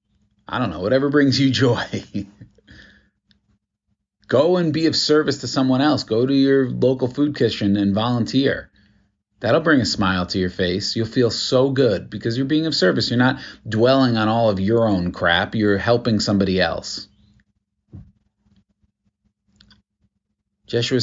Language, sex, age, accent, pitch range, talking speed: English, male, 40-59, American, 105-130 Hz, 150 wpm